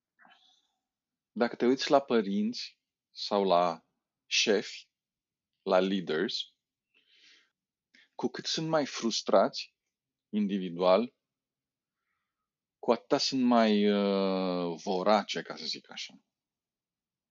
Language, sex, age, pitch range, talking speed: Romanian, male, 40-59, 95-135 Hz, 90 wpm